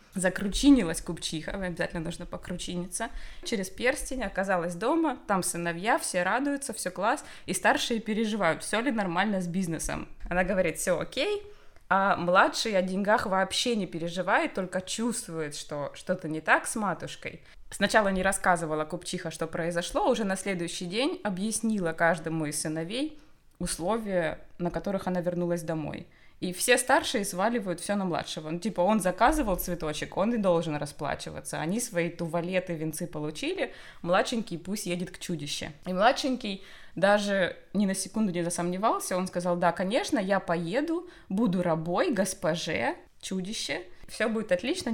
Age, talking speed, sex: 20-39, 150 wpm, female